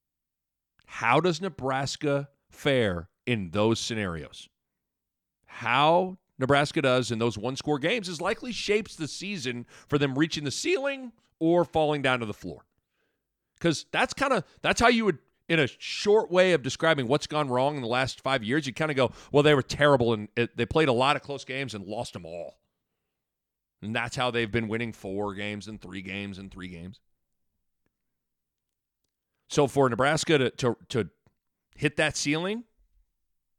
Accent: American